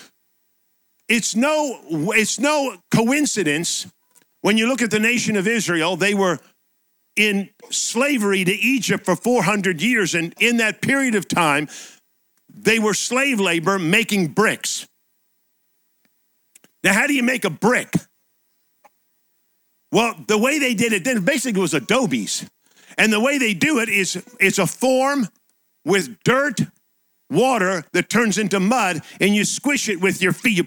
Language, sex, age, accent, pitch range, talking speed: English, male, 50-69, American, 190-245 Hz, 150 wpm